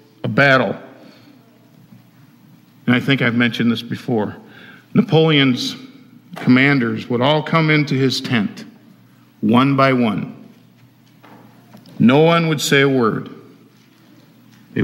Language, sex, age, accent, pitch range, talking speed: English, male, 50-69, American, 115-135 Hz, 110 wpm